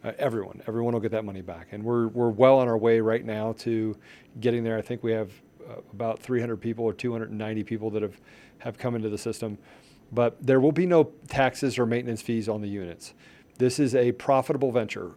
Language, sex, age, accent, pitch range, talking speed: English, male, 40-59, American, 115-125 Hz, 220 wpm